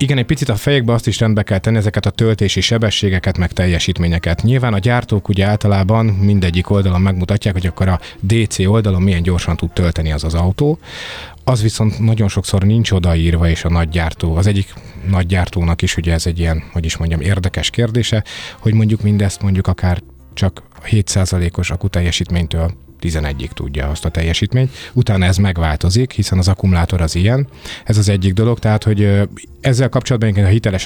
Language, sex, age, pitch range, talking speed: Hungarian, male, 30-49, 85-110 Hz, 175 wpm